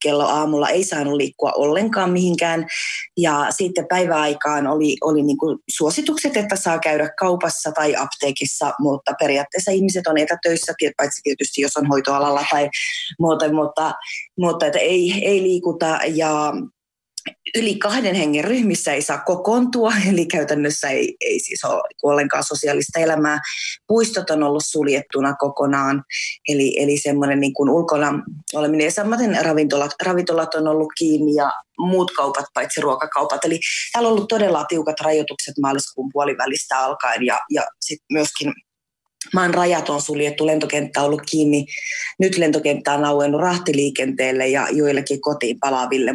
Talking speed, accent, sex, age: 140 wpm, native, female, 20-39